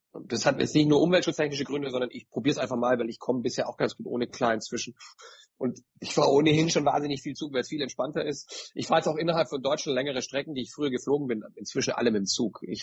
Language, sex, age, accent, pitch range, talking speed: German, male, 40-59, German, 125-160 Hz, 260 wpm